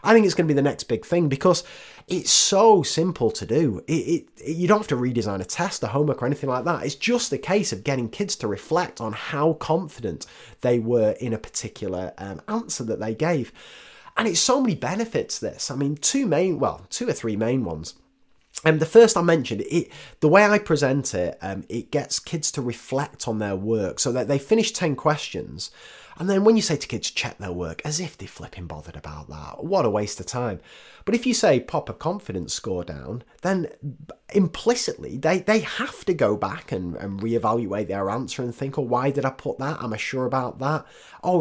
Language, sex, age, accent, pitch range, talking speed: English, male, 30-49, British, 120-175 Hz, 225 wpm